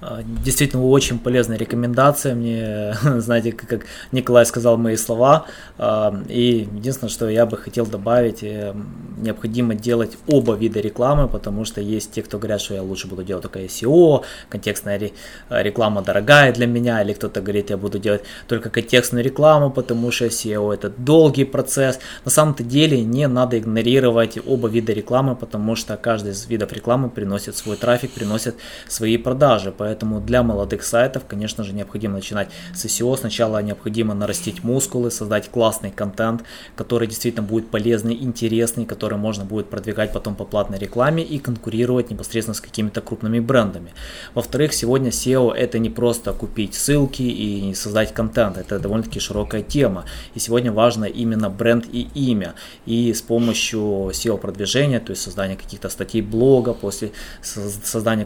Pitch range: 105-120 Hz